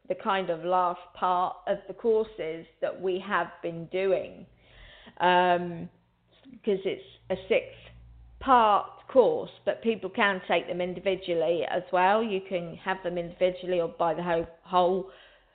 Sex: female